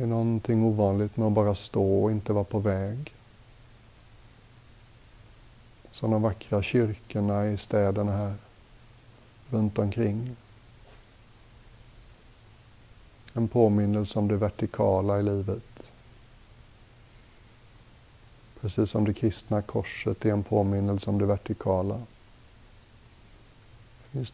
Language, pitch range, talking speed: Swedish, 105-115 Hz, 100 wpm